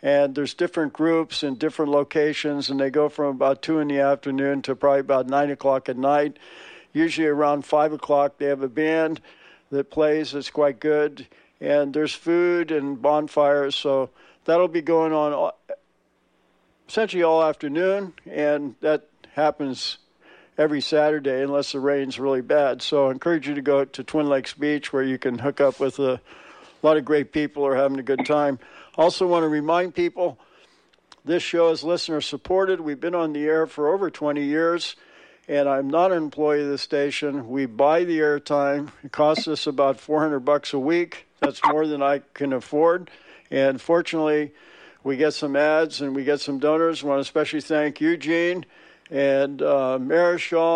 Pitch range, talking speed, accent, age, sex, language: 140-160 Hz, 175 wpm, American, 60-79, male, English